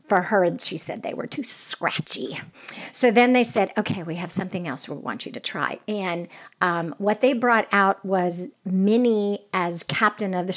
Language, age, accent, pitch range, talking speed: English, 50-69, American, 185-240 Hz, 195 wpm